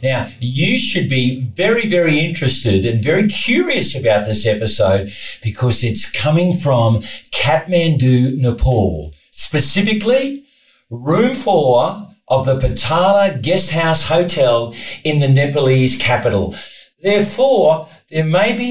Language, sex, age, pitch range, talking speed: English, male, 50-69, 120-175 Hz, 110 wpm